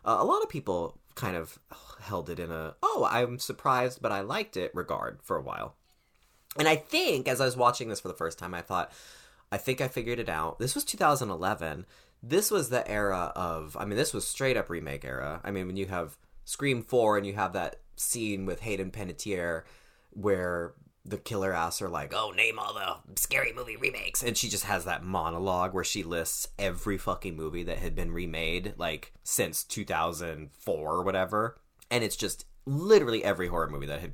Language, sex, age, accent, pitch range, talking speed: English, male, 20-39, American, 90-125 Hz, 200 wpm